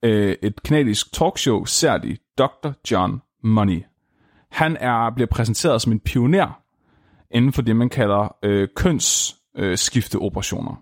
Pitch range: 100-135 Hz